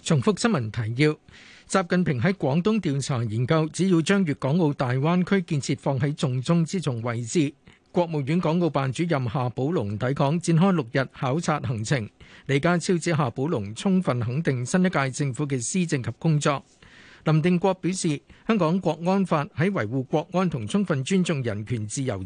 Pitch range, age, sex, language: 135-180 Hz, 50-69, male, Chinese